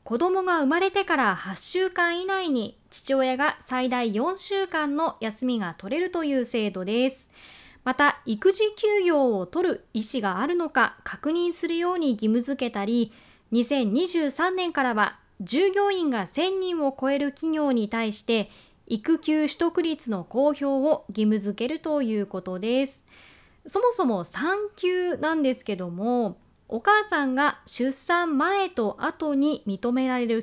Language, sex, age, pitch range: Japanese, female, 20-39, 230-340 Hz